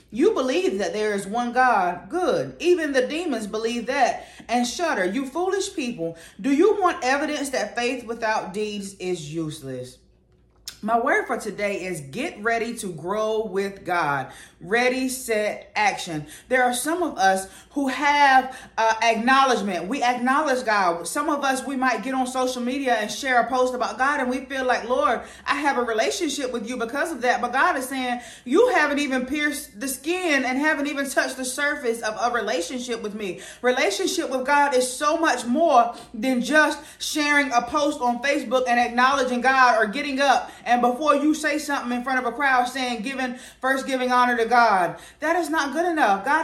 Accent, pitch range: American, 235-290 Hz